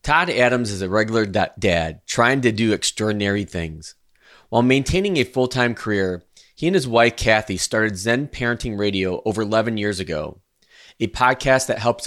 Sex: male